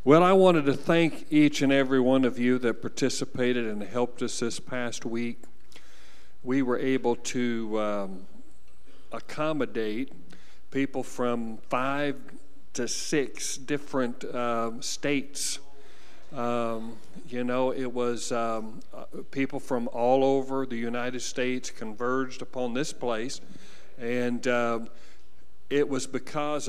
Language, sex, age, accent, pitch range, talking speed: English, male, 50-69, American, 120-140 Hz, 125 wpm